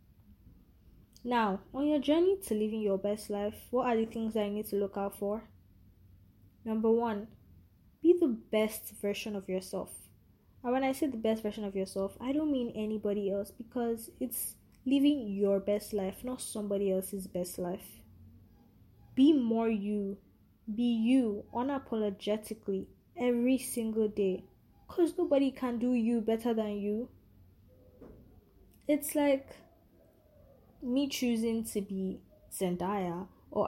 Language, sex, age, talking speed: English, female, 10-29, 140 wpm